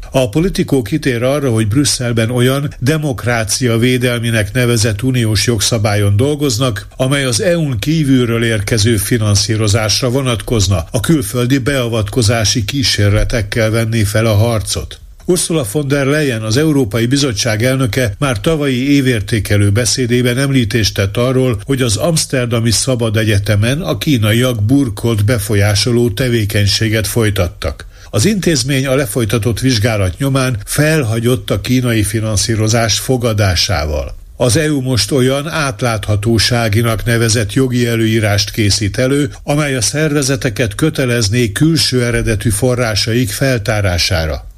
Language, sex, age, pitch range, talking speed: Hungarian, male, 50-69, 110-130 Hz, 110 wpm